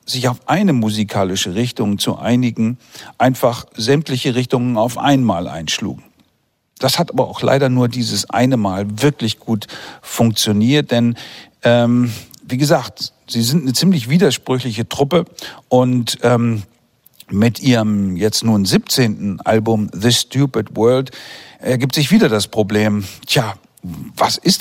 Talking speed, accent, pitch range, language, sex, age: 130 wpm, German, 110-140 Hz, German, male, 50-69